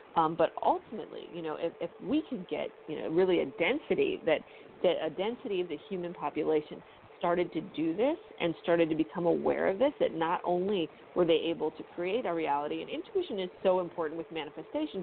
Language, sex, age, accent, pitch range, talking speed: English, female, 40-59, American, 165-255 Hz, 205 wpm